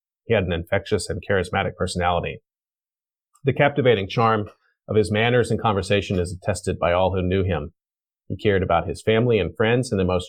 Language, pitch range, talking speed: English, 90-110 Hz, 185 wpm